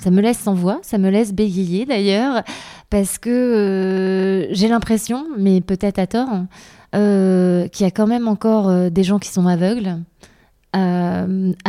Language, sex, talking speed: French, female, 175 wpm